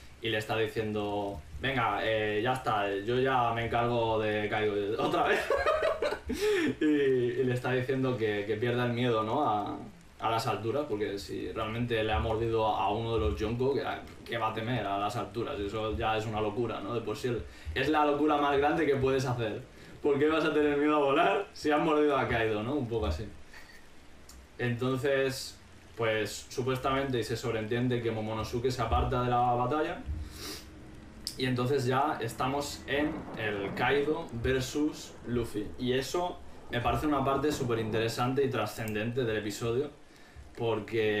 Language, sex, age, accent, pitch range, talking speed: Spanish, male, 20-39, Spanish, 105-135 Hz, 175 wpm